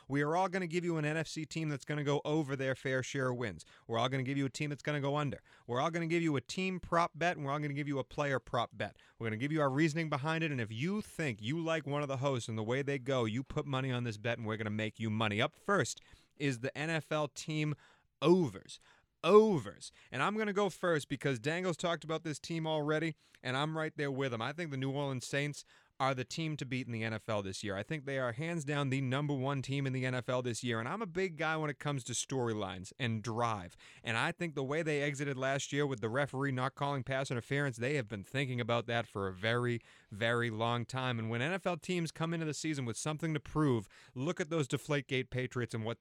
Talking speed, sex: 270 wpm, male